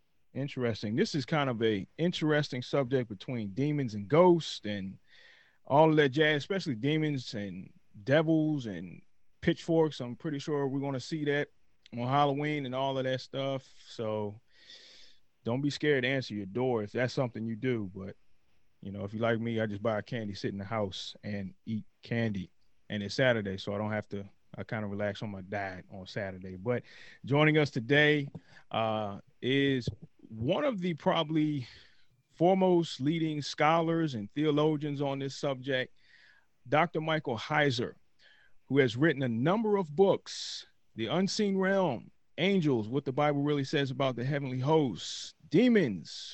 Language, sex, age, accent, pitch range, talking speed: English, male, 30-49, American, 115-155 Hz, 165 wpm